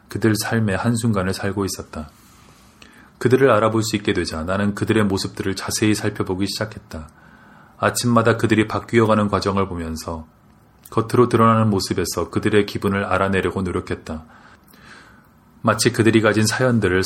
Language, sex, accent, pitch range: Korean, male, native, 95-115 Hz